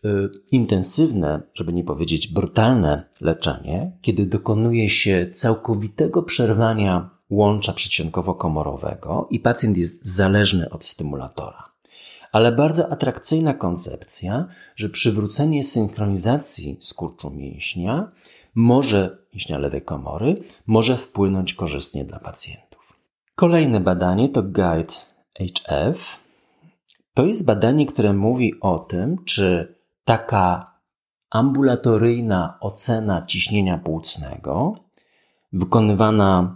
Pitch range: 90-125 Hz